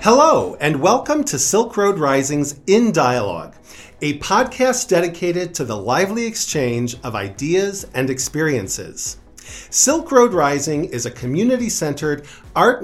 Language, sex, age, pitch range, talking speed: English, male, 40-59, 125-205 Hz, 130 wpm